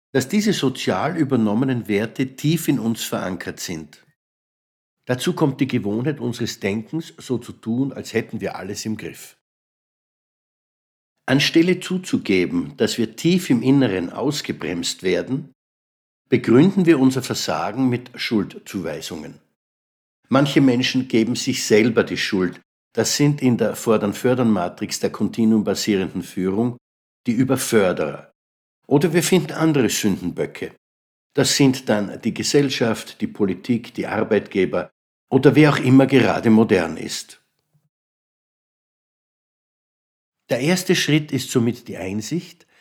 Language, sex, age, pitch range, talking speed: German, male, 60-79, 110-145 Hz, 120 wpm